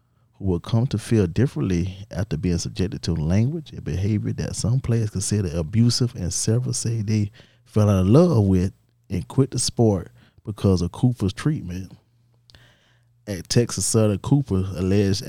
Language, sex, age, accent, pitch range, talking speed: English, male, 30-49, American, 95-120 Hz, 150 wpm